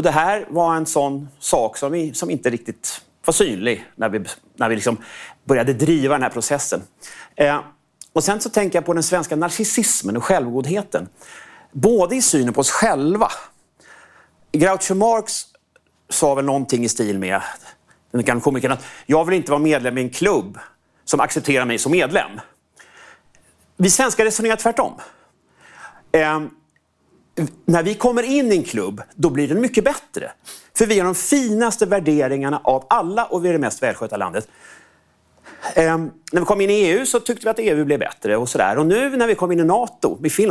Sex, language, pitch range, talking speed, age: male, Swedish, 140-225 Hz, 185 wpm, 30-49